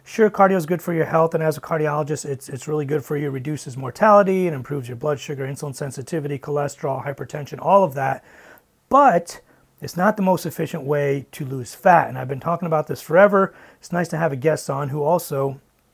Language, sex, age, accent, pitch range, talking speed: English, male, 30-49, American, 145-180 Hz, 220 wpm